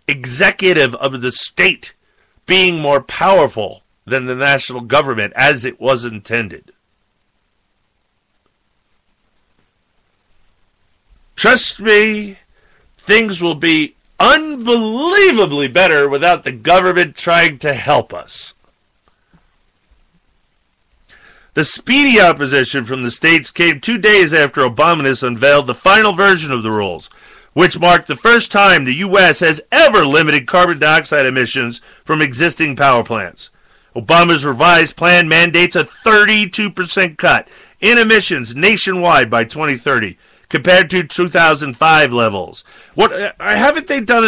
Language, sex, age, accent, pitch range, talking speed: English, male, 40-59, American, 135-185 Hz, 115 wpm